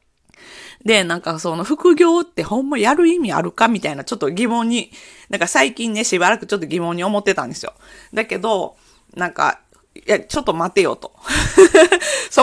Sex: female